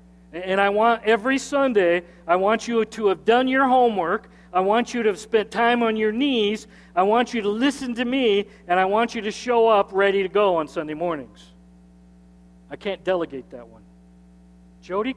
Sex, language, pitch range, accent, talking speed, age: male, English, 170-235 Hz, American, 195 wpm, 40-59